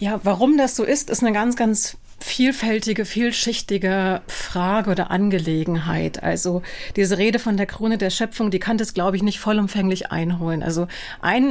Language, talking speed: German, 165 wpm